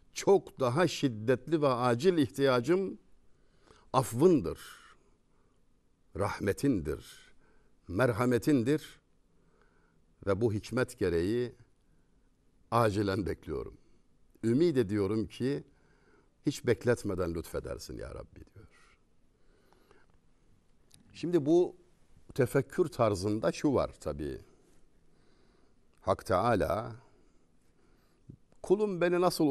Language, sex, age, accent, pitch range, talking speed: Turkish, male, 60-79, native, 100-160 Hz, 70 wpm